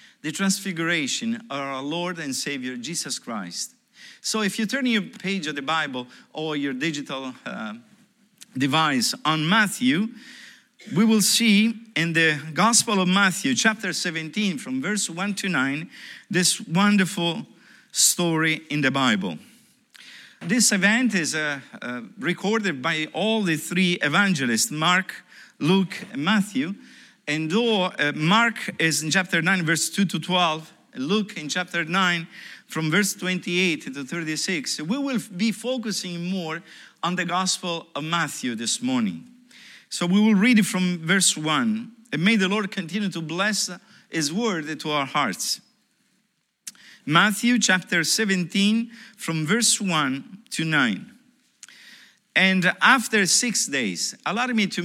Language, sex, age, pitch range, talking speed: English, male, 50-69, 160-220 Hz, 140 wpm